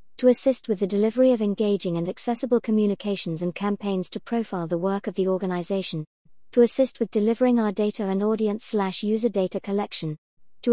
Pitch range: 175-220 Hz